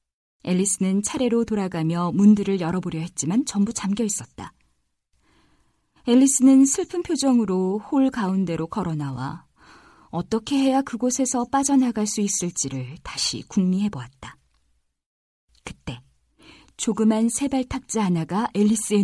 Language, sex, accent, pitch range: Korean, female, native, 160-235 Hz